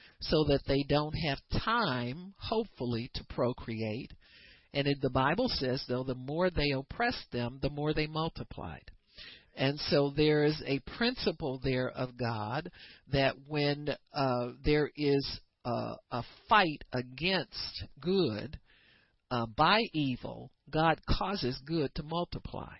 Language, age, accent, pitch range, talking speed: English, 50-69, American, 120-145 Hz, 135 wpm